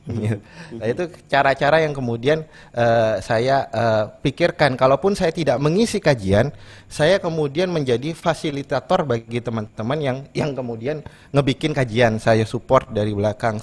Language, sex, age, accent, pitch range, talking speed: Indonesian, male, 30-49, native, 115-155 Hz, 130 wpm